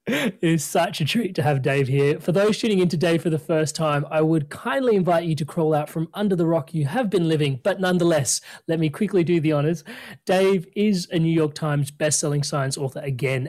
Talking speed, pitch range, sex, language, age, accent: 230 wpm, 135-165 Hz, male, English, 30-49, Australian